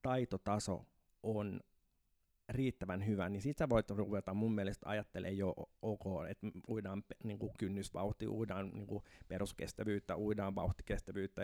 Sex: male